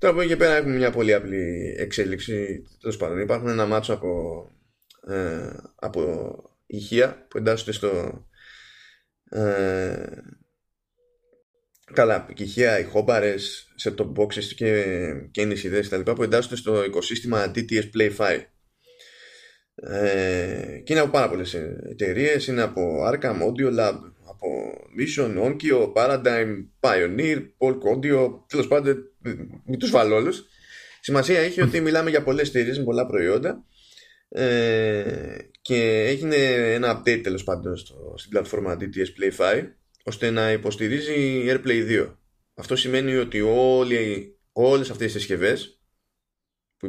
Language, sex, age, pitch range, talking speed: Greek, male, 20-39, 105-135 Hz, 125 wpm